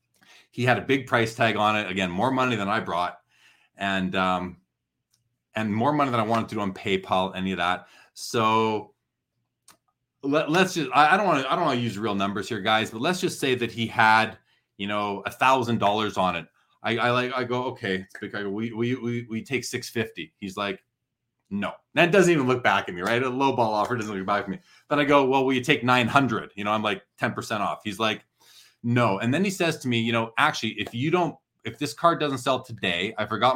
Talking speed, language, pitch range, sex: 230 wpm, English, 105-130 Hz, male